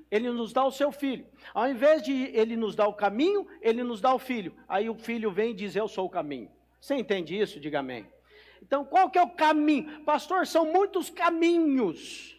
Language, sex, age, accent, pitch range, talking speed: English, male, 50-69, Brazilian, 190-275 Hz, 215 wpm